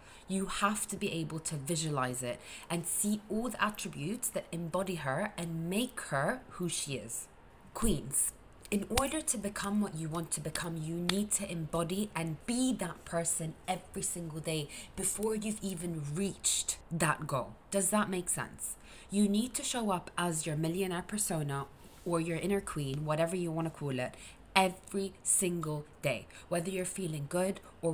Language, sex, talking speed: English, female, 170 wpm